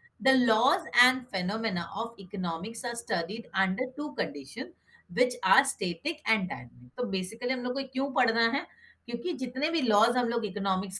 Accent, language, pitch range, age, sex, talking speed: Indian, English, 190-250 Hz, 30-49, female, 180 wpm